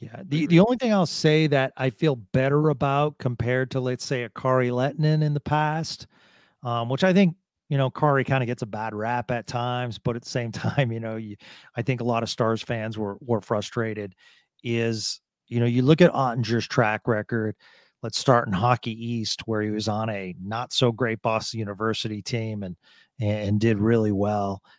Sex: male